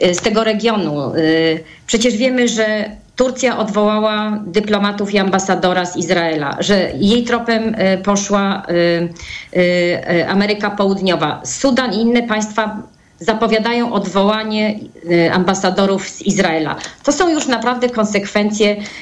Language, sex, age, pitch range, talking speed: Polish, female, 40-59, 190-230 Hz, 105 wpm